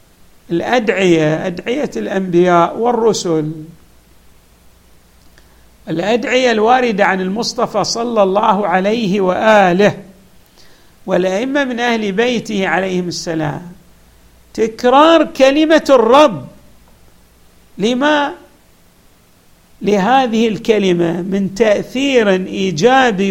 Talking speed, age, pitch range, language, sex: 70 wpm, 50-69, 165-240 Hz, Arabic, male